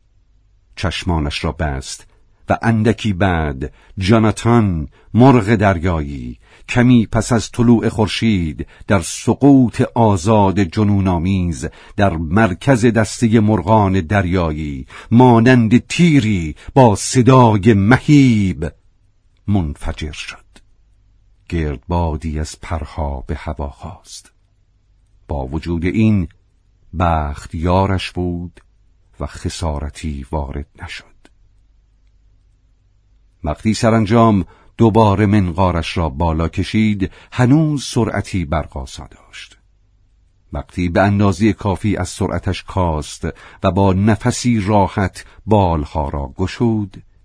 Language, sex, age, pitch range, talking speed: Persian, male, 50-69, 85-110 Hz, 90 wpm